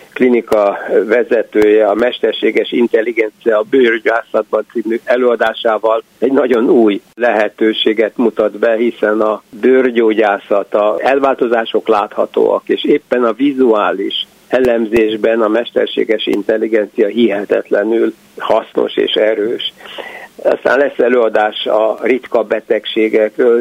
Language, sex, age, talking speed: Hungarian, male, 60-79, 95 wpm